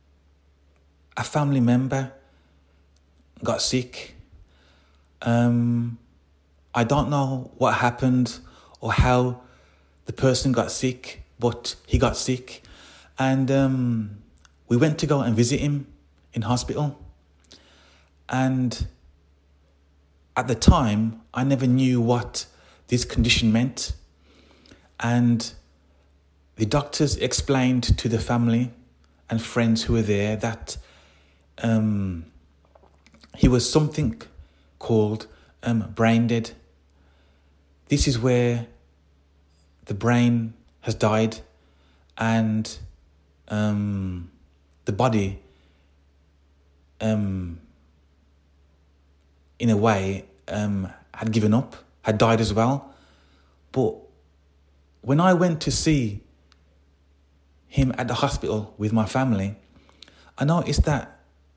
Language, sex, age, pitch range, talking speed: English, male, 30-49, 70-120 Hz, 100 wpm